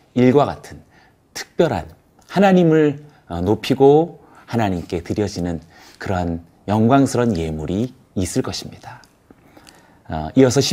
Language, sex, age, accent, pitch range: Korean, male, 40-59, native, 95-145 Hz